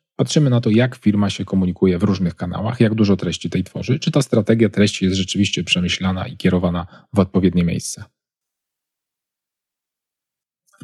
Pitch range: 90-110 Hz